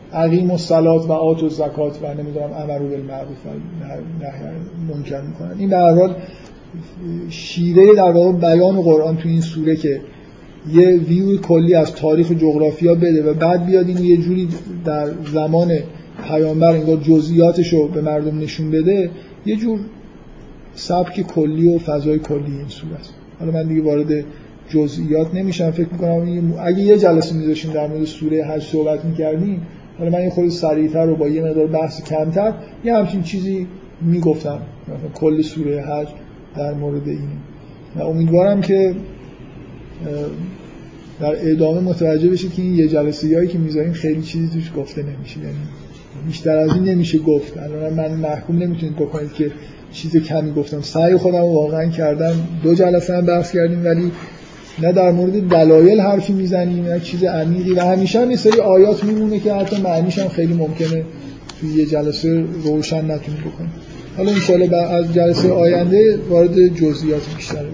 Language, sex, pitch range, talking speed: Persian, male, 155-175 Hz, 155 wpm